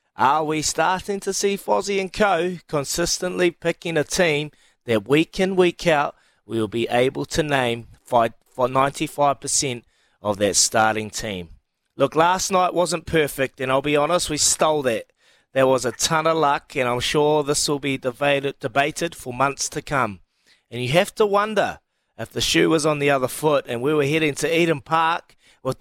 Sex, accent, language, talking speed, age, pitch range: male, Australian, English, 180 wpm, 30-49, 130-170 Hz